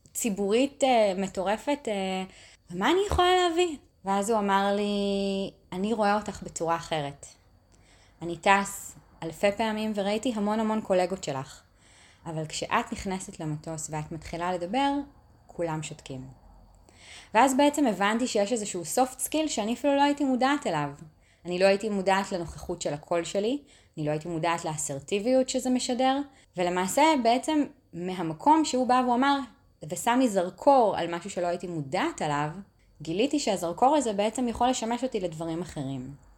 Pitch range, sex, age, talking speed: 165-235 Hz, female, 20-39, 145 wpm